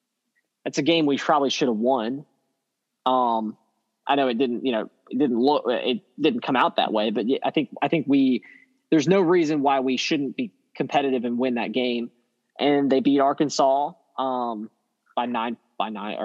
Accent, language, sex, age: American, English, male, 20-39